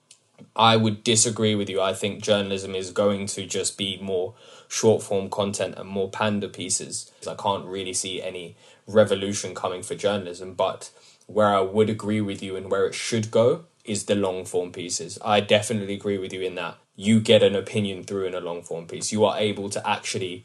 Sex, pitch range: male, 100-115 Hz